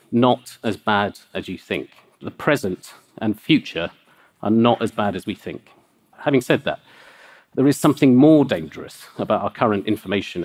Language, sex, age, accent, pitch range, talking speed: English, male, 50-69, British, 100-130 Hz, 165 wpm